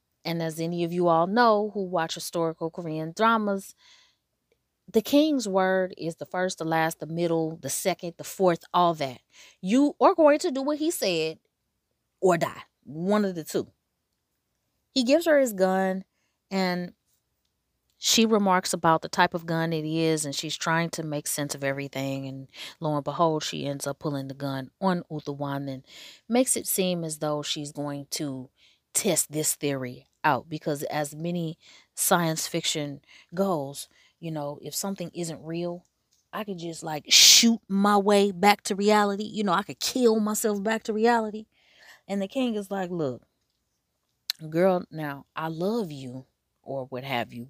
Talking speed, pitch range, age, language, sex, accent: 170 wpm, 150-220 Hz, 20-39, English, female, American